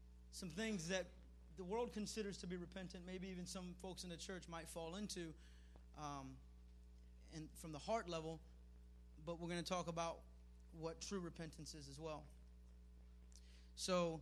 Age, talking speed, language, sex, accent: 30-49, 160 wpm, English, male, American